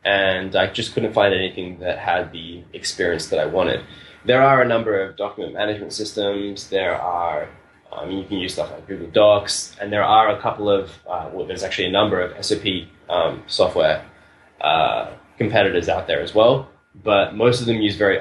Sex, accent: male, Australian